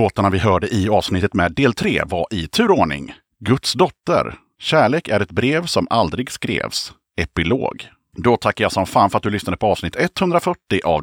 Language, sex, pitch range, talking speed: Swedish, male, 90-145 Hz, 185 wpm